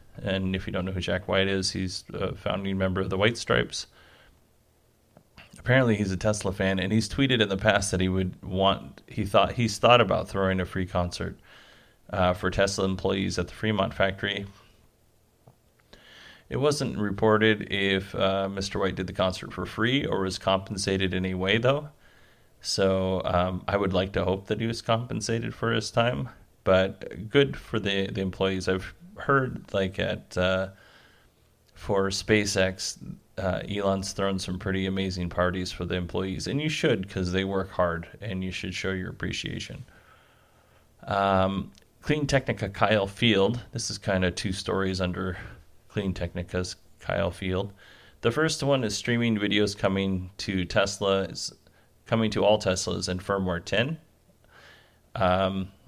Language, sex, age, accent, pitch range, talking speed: English, male, 30-49, American, 95-110 Hz, 160 wpm